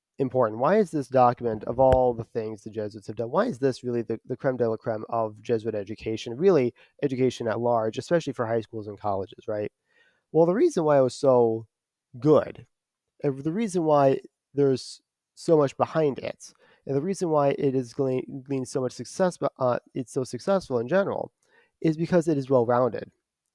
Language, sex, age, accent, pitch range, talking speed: English, male, 30-49, American, 120-155 Hz, 195 wpm